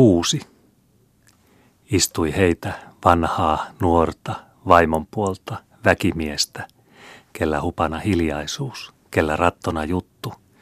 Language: Finnish